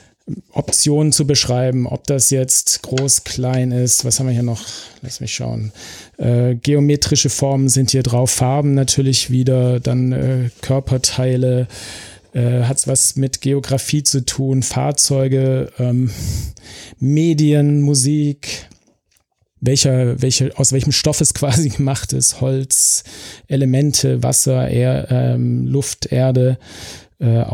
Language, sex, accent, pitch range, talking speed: German, male, German, 120-140 Hz, 125 wpm